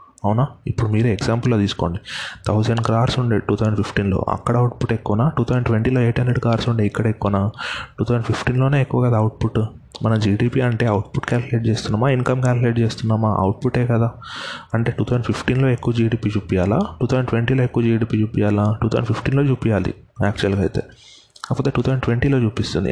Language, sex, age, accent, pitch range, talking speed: Telugu, male, 30-49, native, 100-120 Hz, 150 wpm